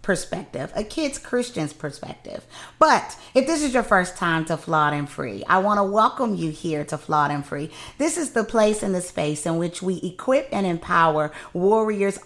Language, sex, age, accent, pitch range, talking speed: English, female, 30-49, American, 175-225 Hz, 195 wpm